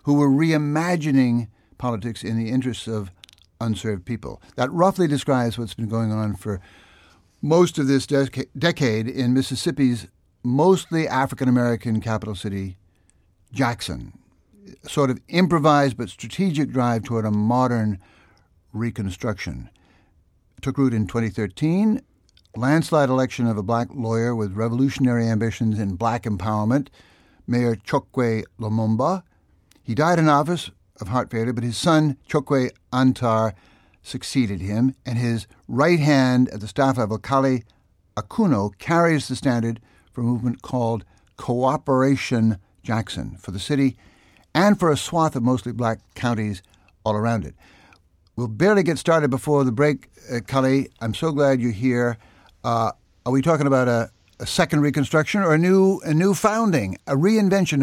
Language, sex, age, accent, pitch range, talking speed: English, male, 60-79, American, 110-140 Hz, 145 wpm